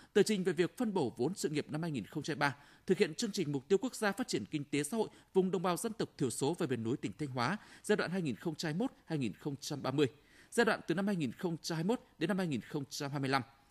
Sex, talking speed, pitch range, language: male, 215 wpm, 150-205 Hz, Vietnamese